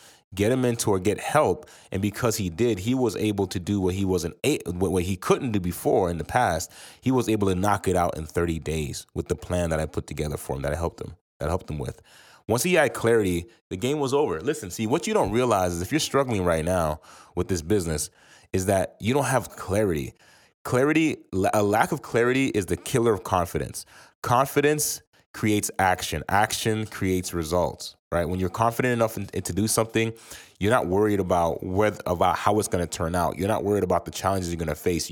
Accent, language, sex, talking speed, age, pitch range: American, English, male, 220 wpm, 30-49, 90-110 Hz